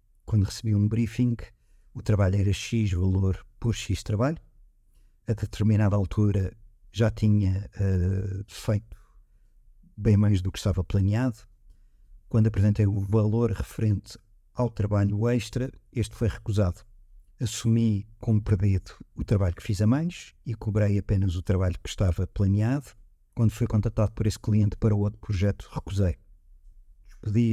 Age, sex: 50-69, male